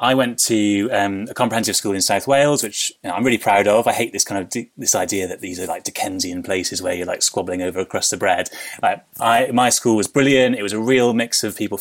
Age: 20-39